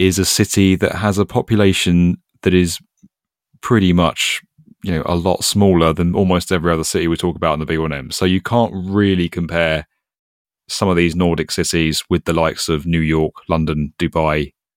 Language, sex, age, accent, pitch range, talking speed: English, male, 30-49, British, 80-95 Hz, 190 wpm